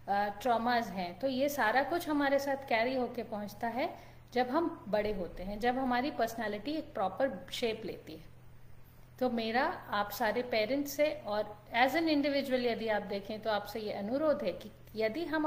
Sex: female